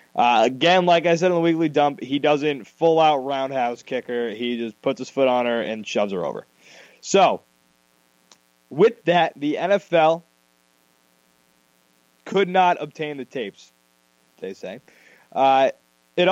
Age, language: 20-39, English